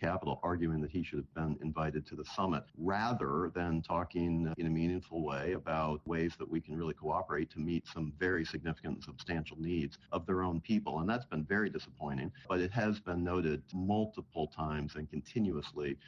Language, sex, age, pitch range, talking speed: English, male, 50-69, 80-95 Hz, 190 wpm